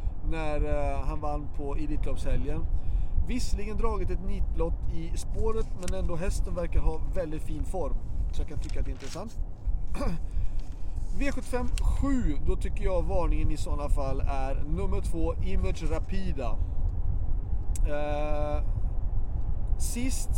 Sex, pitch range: male, 80-95 Hz